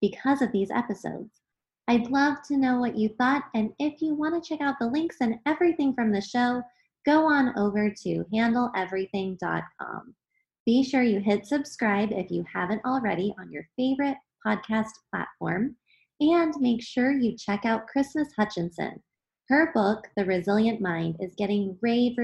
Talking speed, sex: 160 wpm, female